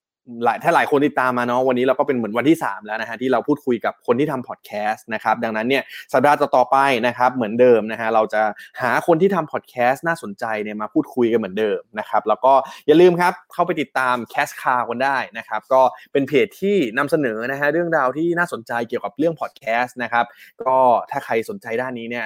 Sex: male